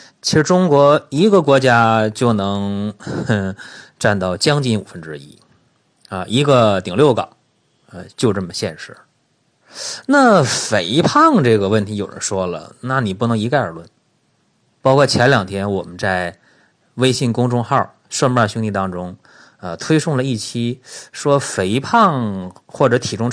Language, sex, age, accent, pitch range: Chinese, male, 30-49, native, 100-145 Hz